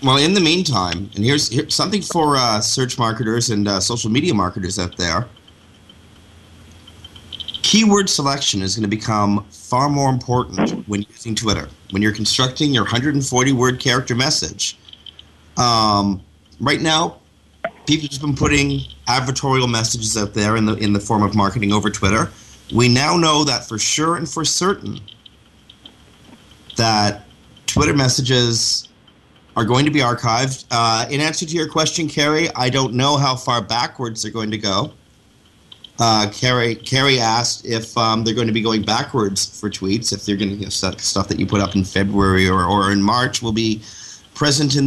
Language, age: English, 30-49